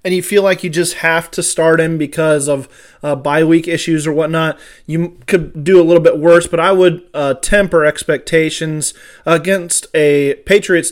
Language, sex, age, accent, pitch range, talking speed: English, male, 20-39, American, 150-170 Hz, 185 wpm